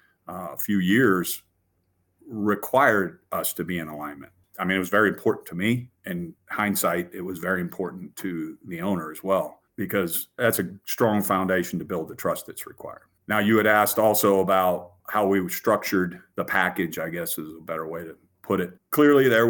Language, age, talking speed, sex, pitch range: English, 40-59, 190 wpm, male, 90-105 Hz